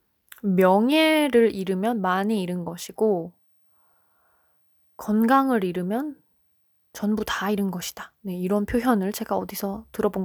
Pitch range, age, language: 185-235 Hz, 20-39, Korean